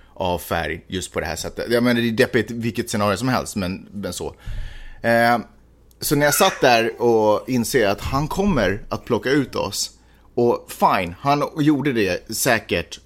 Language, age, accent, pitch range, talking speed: Swedish, 30-49, native, 90-115 Hz, 185 wpm